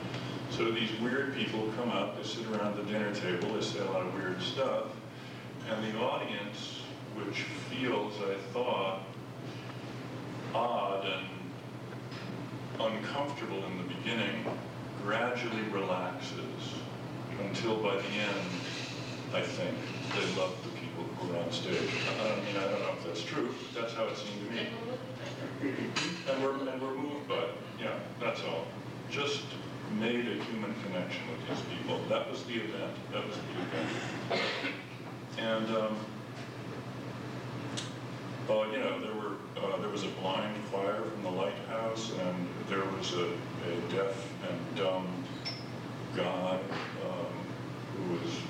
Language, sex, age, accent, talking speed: English, male, 50-69, American, 145 wpm